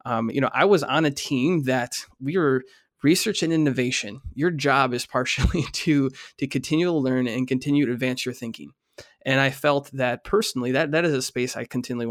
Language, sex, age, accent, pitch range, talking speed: English, male, 20-39, American, 125-145 Hz, 205 wpm